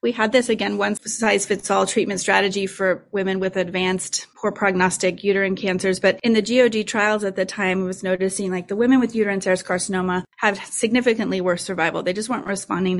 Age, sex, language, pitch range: 30-49, female, English, 195-245 Hz